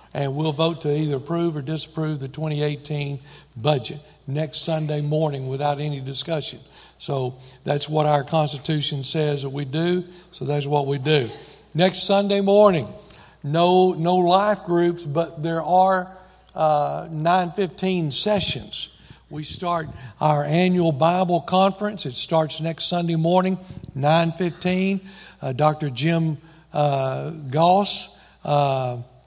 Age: 60-79